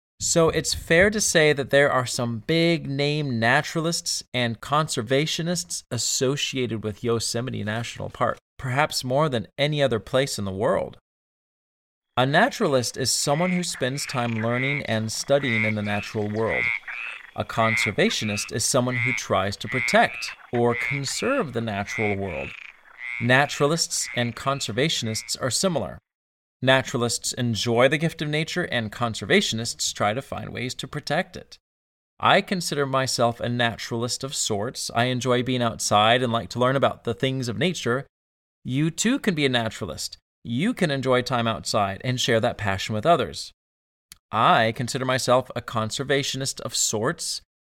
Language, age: English, 30-49